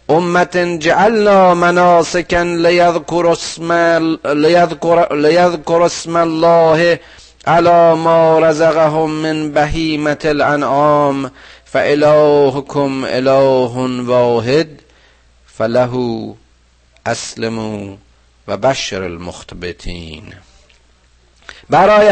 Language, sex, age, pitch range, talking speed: Persian, male, 50-69, 125-165 Hz, 60 wpm